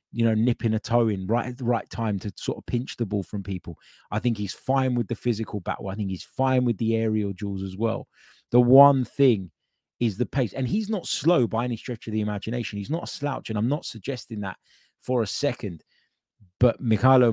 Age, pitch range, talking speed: 20-39, 95-120 Hz, 230 wpm